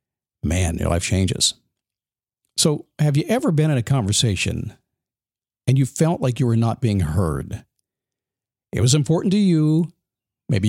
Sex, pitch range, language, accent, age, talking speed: male, 115-150 Hz, English, American, 50-69, 150 wpm